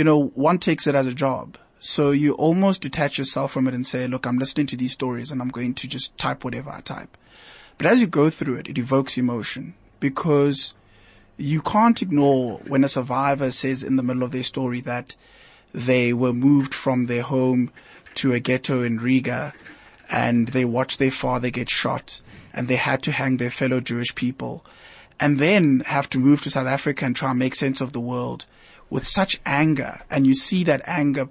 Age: 20-39